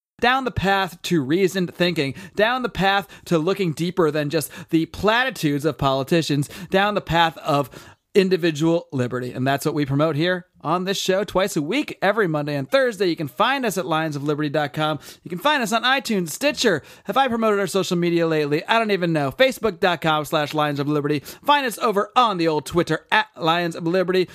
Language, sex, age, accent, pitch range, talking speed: English, male, 30-49, American, 155-235 Hz, 195 wpm